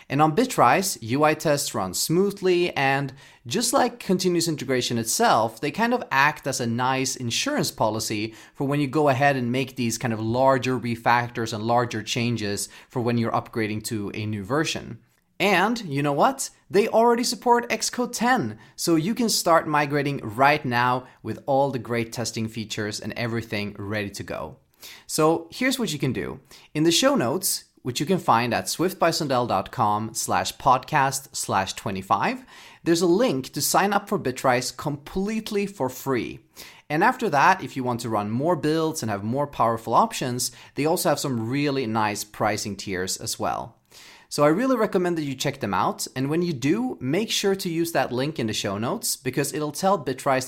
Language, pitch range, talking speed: English, 115-170 Hz, 185 wpm